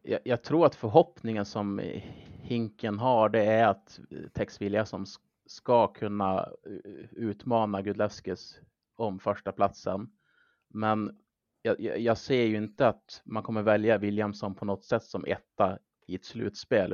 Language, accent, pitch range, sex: Swedish, Norwegian, 100-110 Hz, male